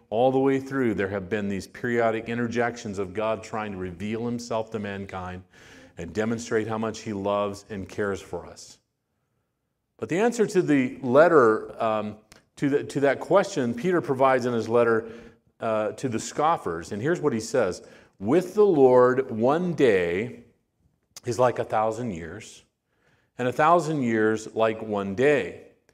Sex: male